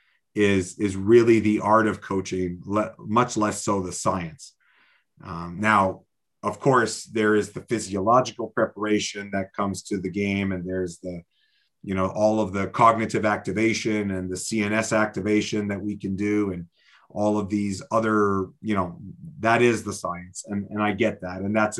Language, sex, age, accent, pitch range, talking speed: English, male, 30-49, American, 95-110 Hz, 175 wpm